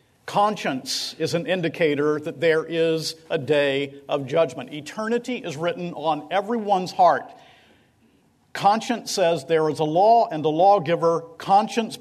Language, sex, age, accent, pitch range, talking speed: English, male, 50-69, American, 150-190 Hz, 135 wpm